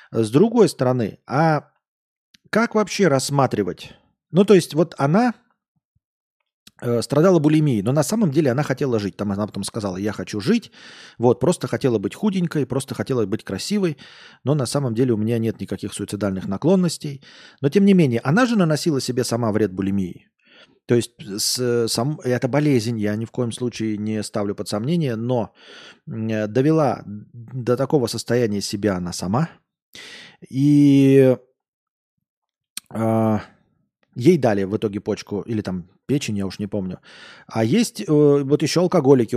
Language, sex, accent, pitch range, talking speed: Russian, male, native, 110-155 Hz, 150 wpm